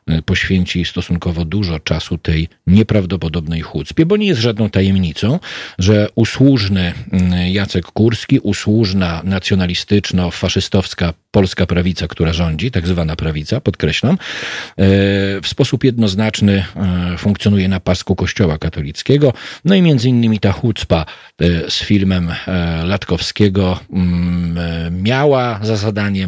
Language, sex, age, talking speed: Polish, male, 40-59, 105 wpm